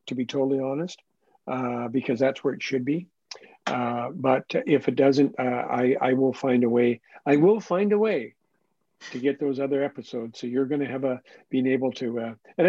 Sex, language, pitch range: male, English, 120-140 Hz